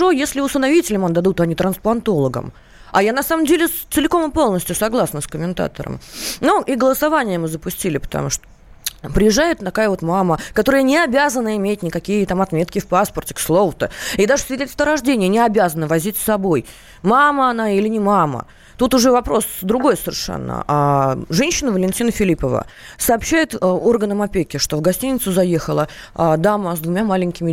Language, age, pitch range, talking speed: Russian, 20-39, 170-245 Hz, 155 wpm